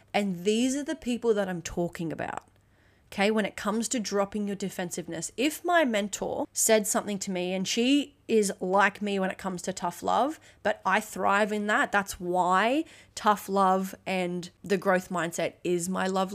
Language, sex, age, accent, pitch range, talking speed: English, female, 30-49, Australian, 190-255 Hz, 185 wpm